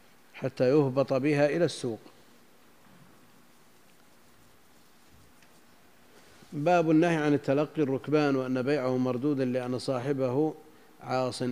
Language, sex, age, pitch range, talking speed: Arabic, male, 50-69, 120-150 Hz, 85 wpm